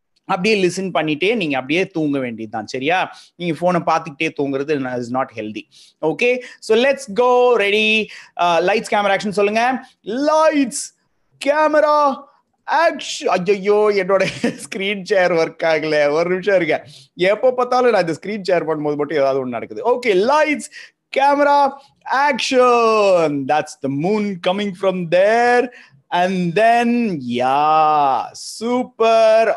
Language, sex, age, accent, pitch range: Tamil, male, 30-49, native, 155-235 Hz